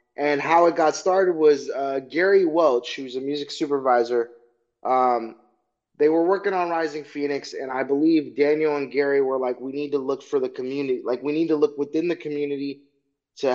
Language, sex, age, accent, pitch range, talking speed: English, male, 20-39, American, 135-160 Hz, 195 wpm